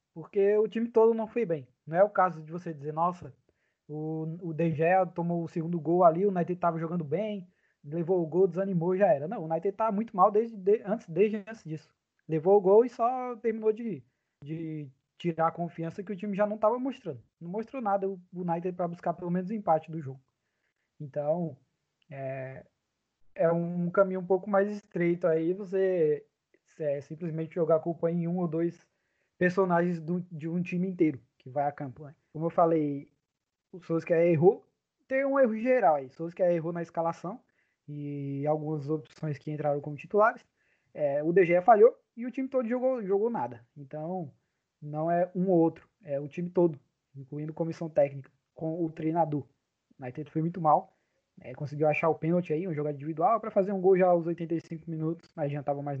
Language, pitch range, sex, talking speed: Portuguese, 155-195 Hz, male, 200 wpm